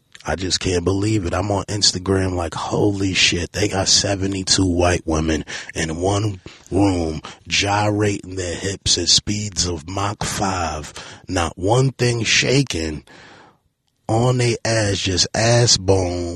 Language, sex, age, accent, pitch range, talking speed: English, male, 30-49, American, 85-115 Hz, 135 wpm